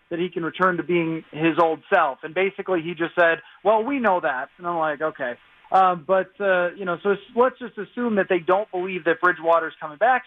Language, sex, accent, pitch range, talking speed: English, male, American, 170-200 Hz, 235 wpm